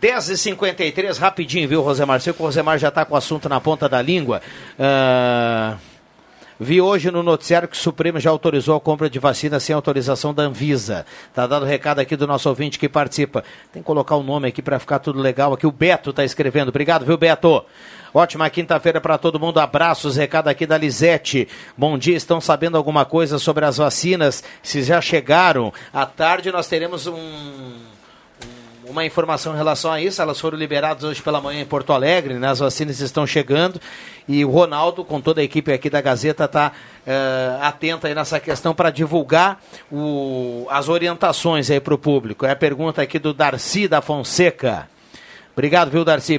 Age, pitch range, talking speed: 50-69, 140-165 Hz, 190 wpm